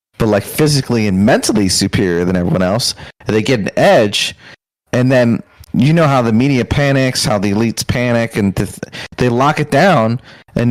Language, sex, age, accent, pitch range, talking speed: English, male, 30-49, American, 105-125 Hz, 185 wpm